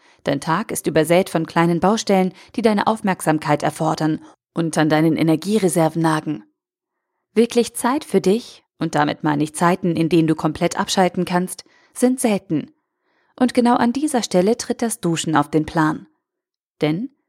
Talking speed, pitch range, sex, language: 155 wpm, 165-240 Hz, female, German